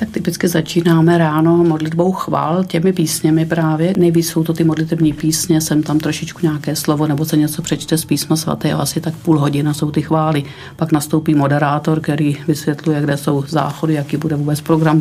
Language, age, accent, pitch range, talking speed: Czech, 50-69, native, 150-165 Hz, 185 wpm